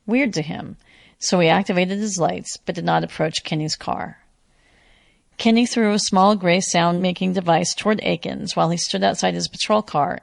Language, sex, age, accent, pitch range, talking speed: English, female, 40-59, American, 165-200 Hz, 175 wpm